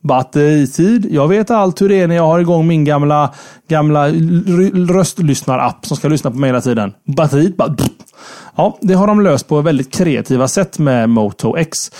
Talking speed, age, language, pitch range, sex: 190 wpm, 30-49, Swedish, 140-190 Hz, male